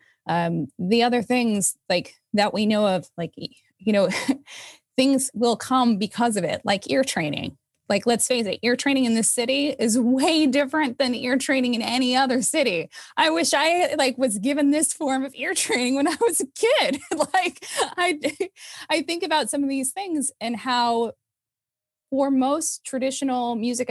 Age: 20-39